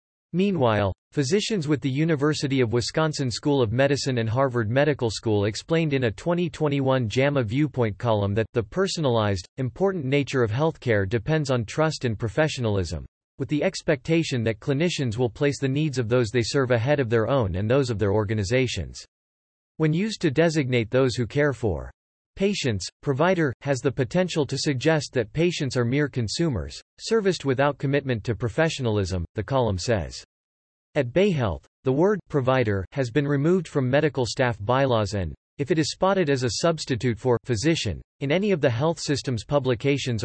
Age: 40-59